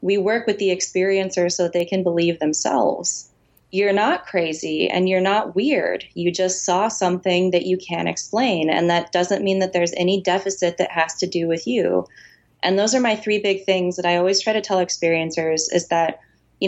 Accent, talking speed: American, 205 wpm